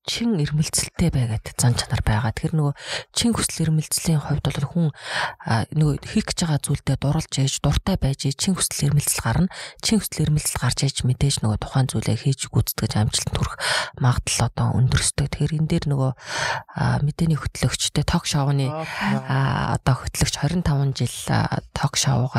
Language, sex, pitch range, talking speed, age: Russian, female, 125-150 Hz, 70 wpm, 30-49